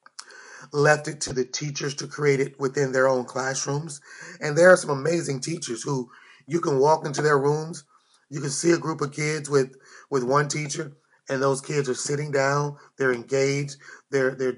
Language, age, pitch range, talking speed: English, 30-49, 135-155 Hz, 190 wpm